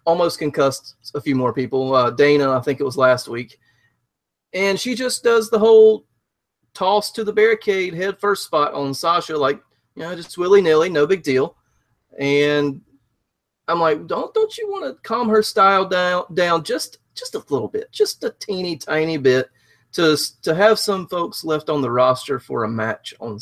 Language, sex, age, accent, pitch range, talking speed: English, male, 30-49, American, 135-180 Hz, 190 wpm